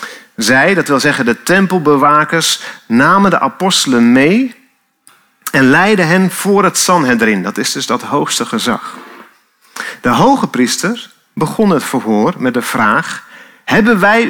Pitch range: 170-225 Hz